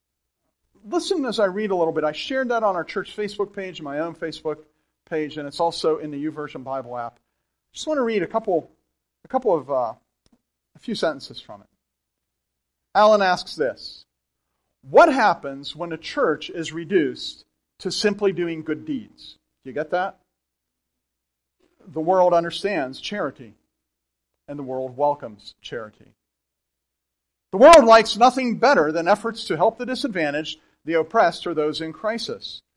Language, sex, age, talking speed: English, male, 40-59, 160 wpm